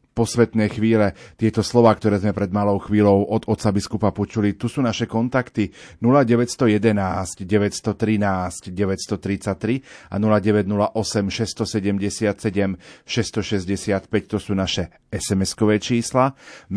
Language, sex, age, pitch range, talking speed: Slovak, male, 40-59, 100-115 Hz, 80 wpm